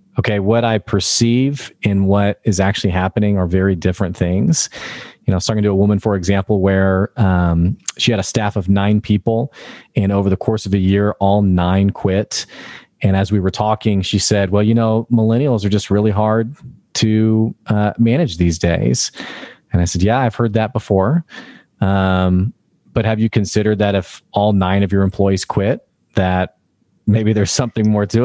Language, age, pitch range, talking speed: English, 30-49, 100-125 Hz, 185 wpm